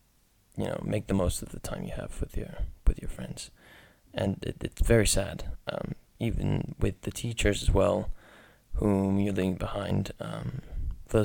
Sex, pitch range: male, 95-110 Hz